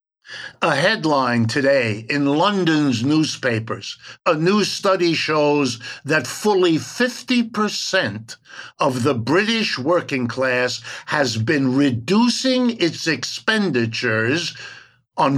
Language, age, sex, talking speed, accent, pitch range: English, 50-69, male, 95 wpm, American, 130-195 Hz